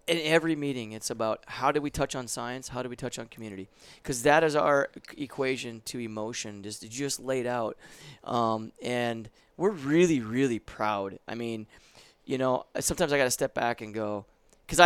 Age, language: 30-49, English